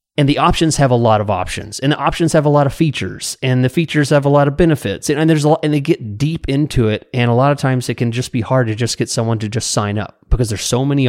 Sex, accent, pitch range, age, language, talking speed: male, American, 115-150 Hz, 30-49, English, 310 wpm